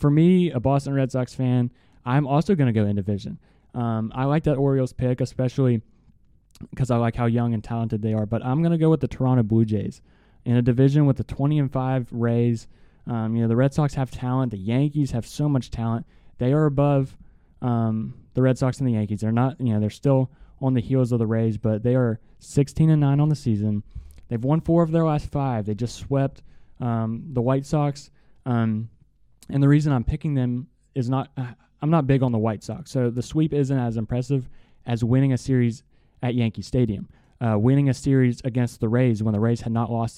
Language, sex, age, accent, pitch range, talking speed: English, male, 20-39, American, 115-135 Hz, 220 wpm